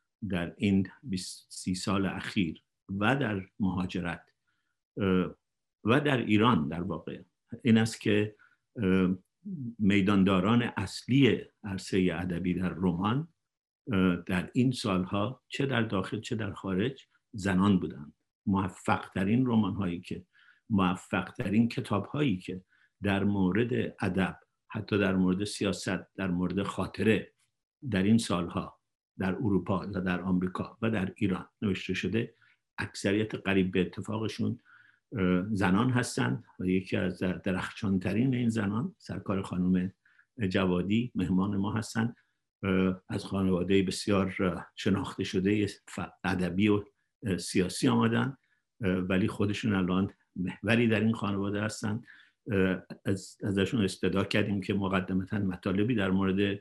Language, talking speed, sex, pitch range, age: English, 115 wpm, male, 95-110 Hz, 50-69